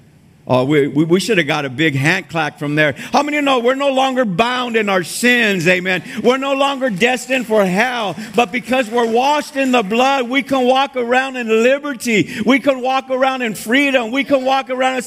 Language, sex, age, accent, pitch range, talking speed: English, male, 50-69, American, 180-255 Hz, 220 wpm